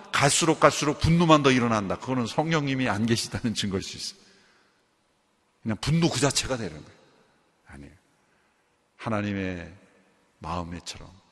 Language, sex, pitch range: Korean, male, 115-170 Hz